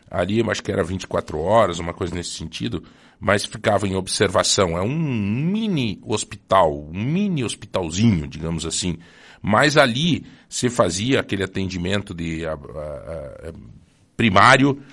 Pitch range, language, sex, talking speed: 90-120 Hz, Portuguese, male, 135 wpm